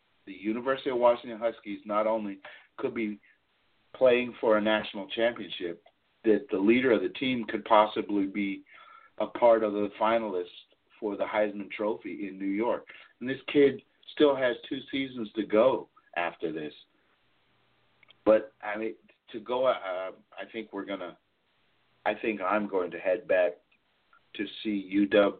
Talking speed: 160 wpm